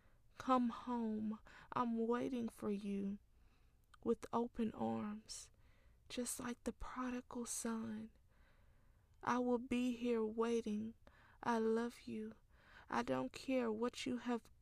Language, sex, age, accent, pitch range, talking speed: English, female, 20-39, American, 180-230 Hz, 115 wpm